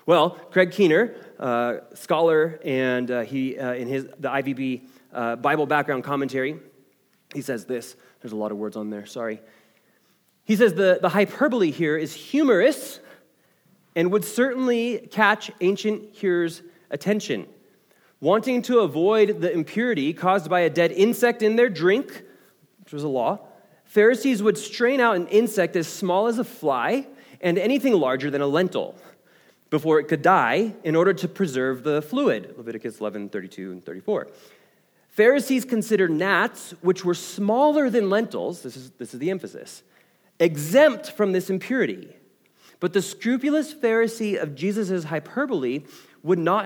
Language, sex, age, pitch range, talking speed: English, male, 30-49, 150-220 Hz, 155 wpm